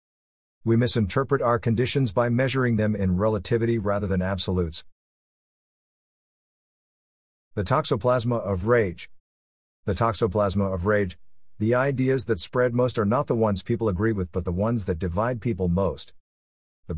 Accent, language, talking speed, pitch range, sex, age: American, English, 140 wpm, 90-120 Hz, male, 50-69